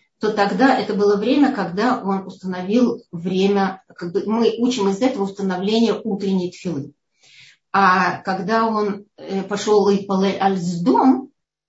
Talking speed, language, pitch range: 130 wpm, Russian, 185-240 Hz